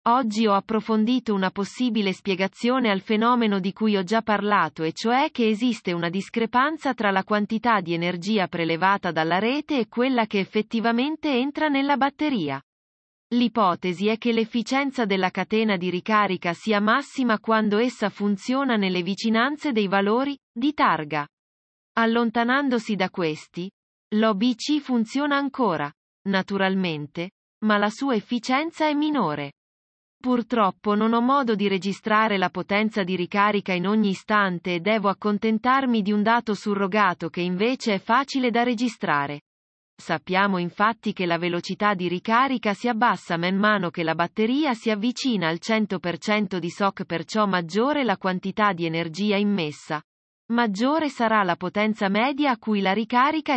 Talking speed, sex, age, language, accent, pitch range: 145 wpm, female, 30-49, Italian, native, 185-240 Hz